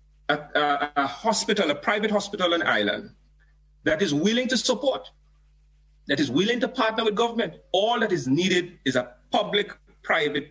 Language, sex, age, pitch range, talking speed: English, male, 40-59, 150-220 Hz, 160 wpm